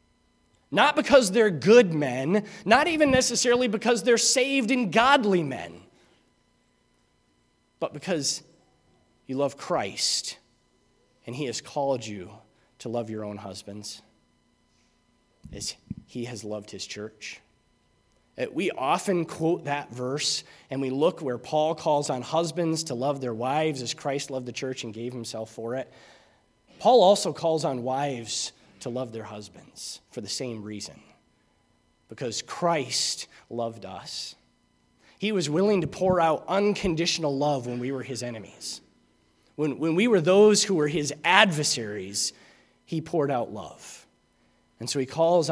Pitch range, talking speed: 120-175 Hz, 145 wpm